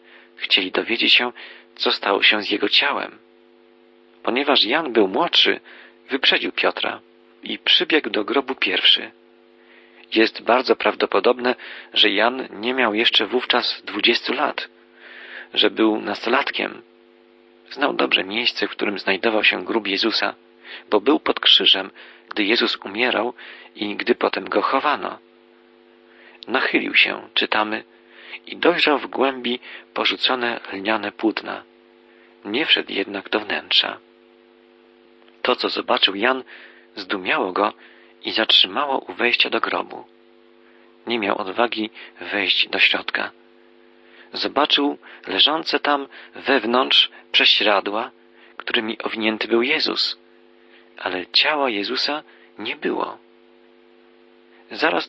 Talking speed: 110 wpm